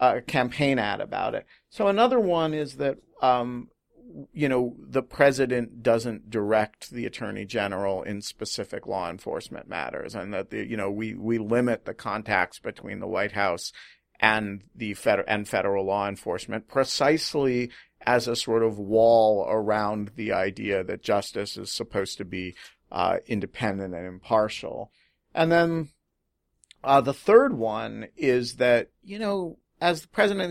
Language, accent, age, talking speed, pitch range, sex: English, American, 50-69, 155 wpm, 105-130 Hz, male